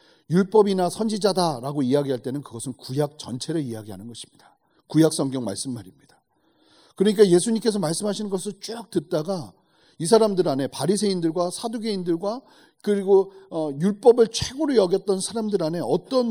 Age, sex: 40-59, male